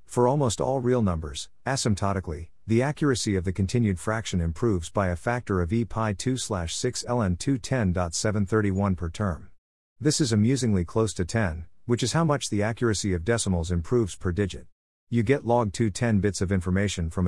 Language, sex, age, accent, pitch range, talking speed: English, male, 50-69, American, 90-115 Hz, 175 wpm